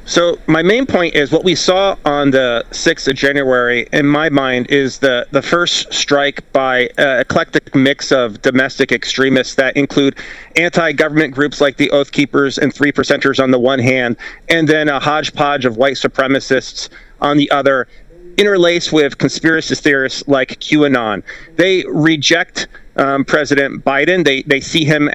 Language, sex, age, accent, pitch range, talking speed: English, male, 40-59, American, 135-160 Hz, 165 wpm